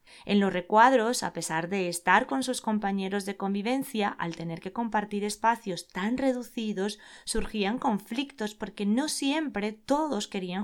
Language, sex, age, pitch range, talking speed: Spanish, female, 20-39, 185-245 Hz, 145 wpm